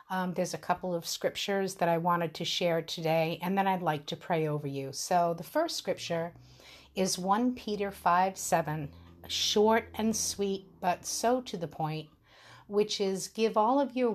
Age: 50-69